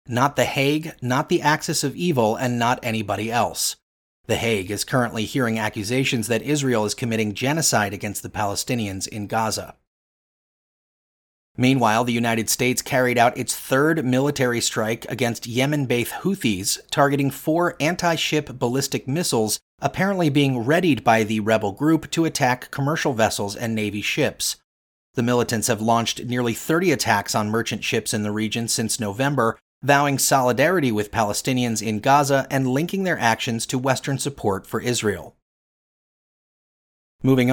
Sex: male